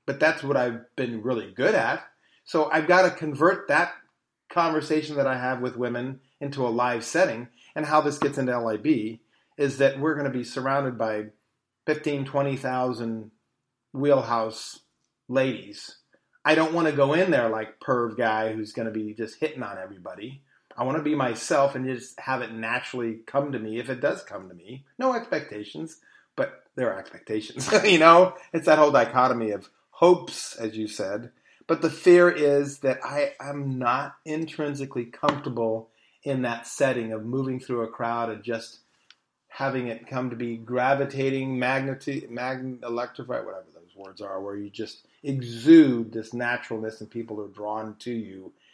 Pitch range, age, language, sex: 115-145 Hz, 40-59, English, male